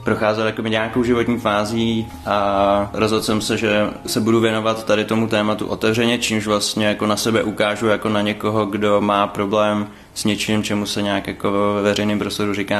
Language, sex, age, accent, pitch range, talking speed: Czech, male, 20-39, native, 100-105 Hz, 185 wpm